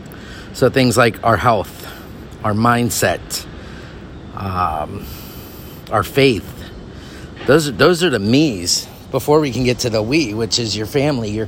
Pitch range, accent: 100-130 Hz, American